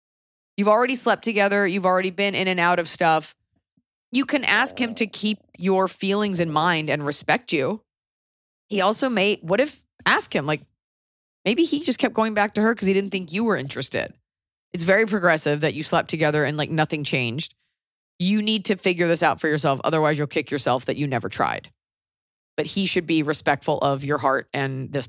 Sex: female